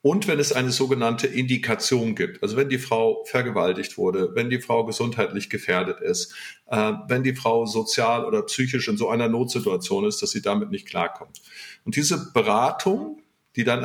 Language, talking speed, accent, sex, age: German, 180 wpm, German, male, 50-69